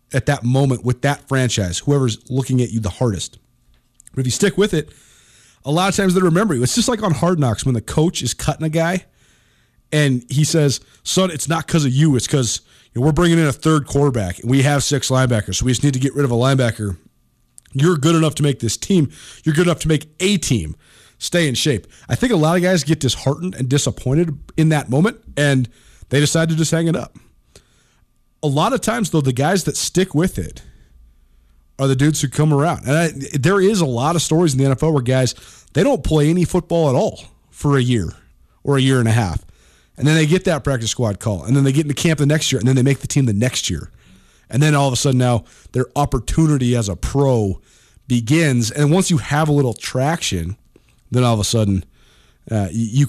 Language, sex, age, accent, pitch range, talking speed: English, male, 30-49, American, 120-155 Hz, 235 wpm